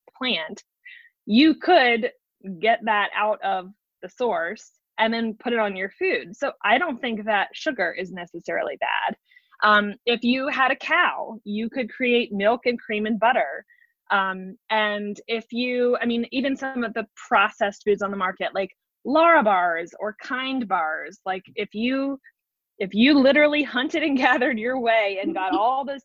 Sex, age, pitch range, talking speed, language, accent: female, 20-39, 205-265 Hz, 175 wpm, English, American